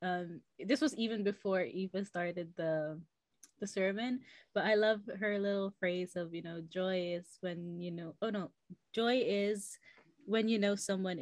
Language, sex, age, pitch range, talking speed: English, female, 20-39, 170-210 Hz, 170 wpm